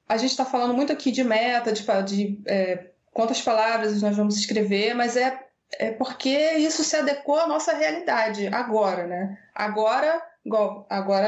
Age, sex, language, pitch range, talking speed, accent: 20-39, female, Portuguese, 210-265 Hz, 160 wpm, Brazilian